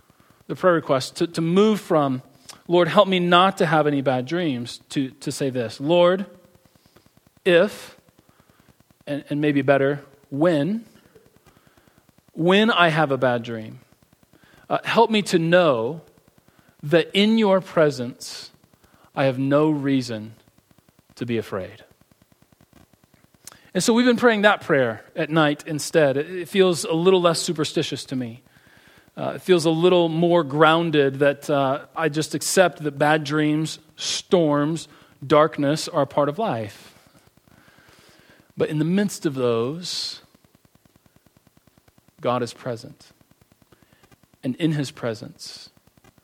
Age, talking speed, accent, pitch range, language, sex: 40-59, 135 wpm, American, 135-175 Hz, English, male